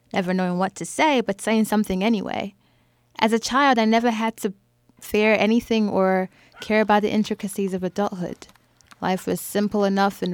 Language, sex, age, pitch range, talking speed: English, female, 20-39, 185-225 Hz, 175 wpm